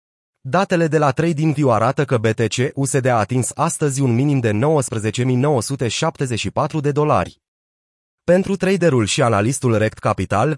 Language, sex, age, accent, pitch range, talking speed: Romanian, male, 30-49, native, 115-150 Hz, 130 wpm